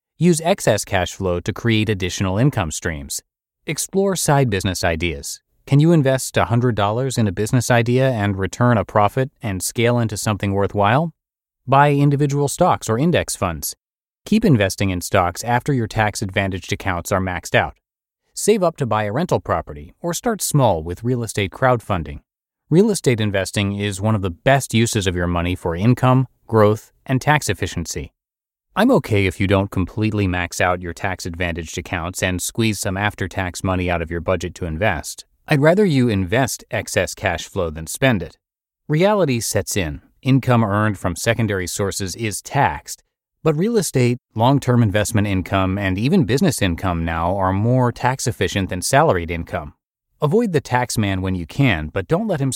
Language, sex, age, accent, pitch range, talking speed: English, male, 30-49, American, 95-130 Hz, 170 wpm